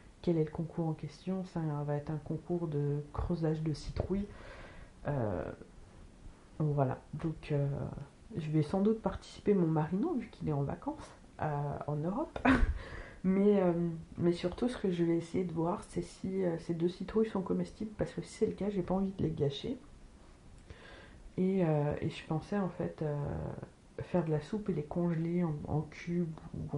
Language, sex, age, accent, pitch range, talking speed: French, female, 40-59, French, 150-185 Hz, 190 wpm